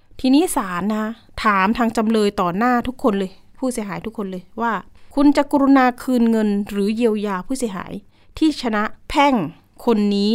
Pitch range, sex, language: 205-270 Hz, female, Thai